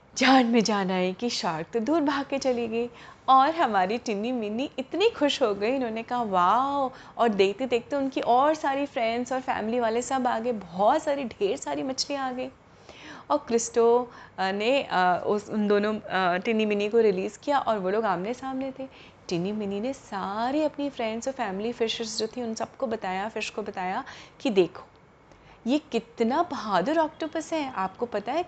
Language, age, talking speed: Hindi, 30-49, 190 wpm